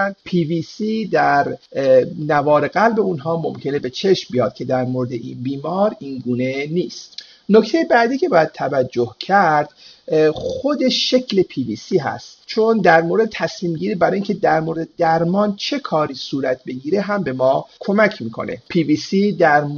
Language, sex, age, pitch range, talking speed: Persian, male, 50-69, 140-195 Hz, 160 wpm